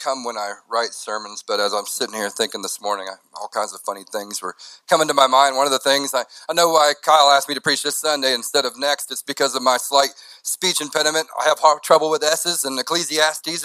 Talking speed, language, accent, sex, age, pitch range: 250 wpm, English, American, male, 40-59, 130-165 Hz